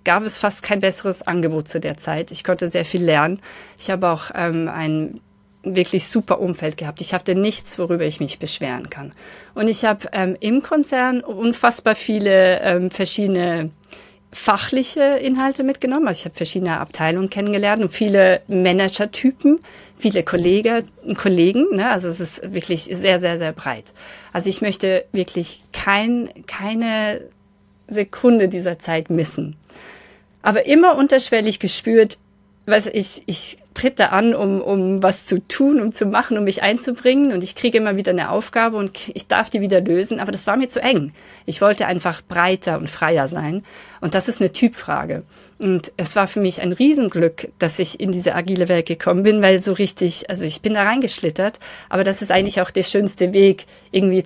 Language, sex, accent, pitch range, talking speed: German, female, German, 175-215 Hz, 175 wpm